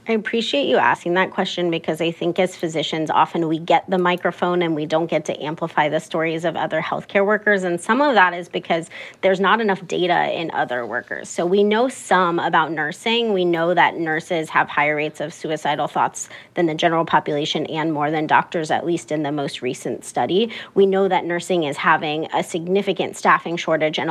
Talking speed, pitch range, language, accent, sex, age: 205 wpm, 165-195 Hz, English, American, female, 30-49